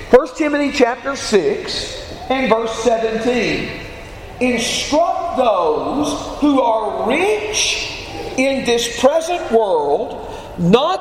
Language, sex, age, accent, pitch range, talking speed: English, male, 50-69, American, 255-370 Hz, 95 wpm